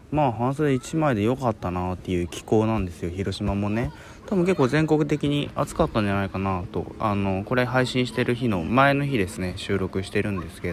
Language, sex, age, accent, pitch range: Japanese, male, 20-39, native, 95-125 Hz